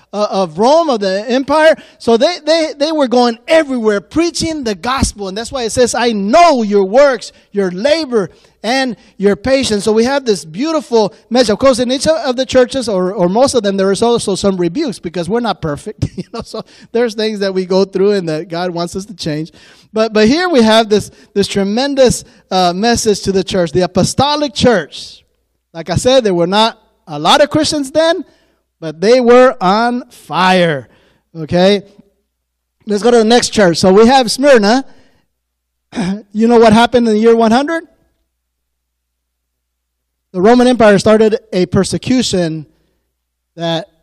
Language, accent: English, American